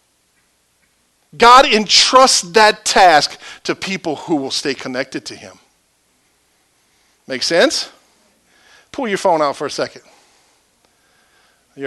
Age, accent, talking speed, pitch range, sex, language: 50-69, American, 110 wpm, 165-225 Hz, male, English